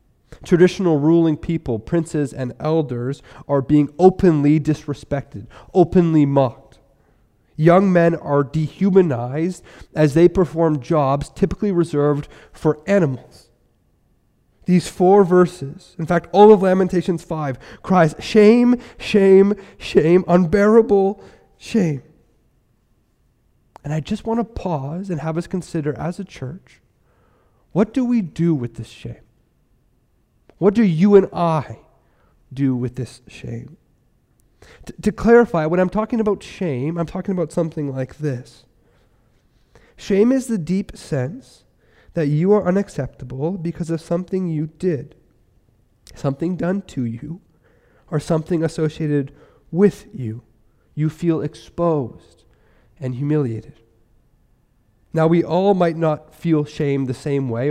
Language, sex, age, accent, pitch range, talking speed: English, male, 30-49, American, 135-180 Hz, 125 wpm